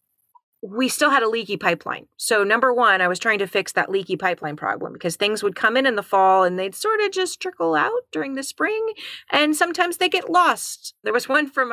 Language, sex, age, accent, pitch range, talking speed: English, female, 30-49, American, 190-275 Hz, 230 wpm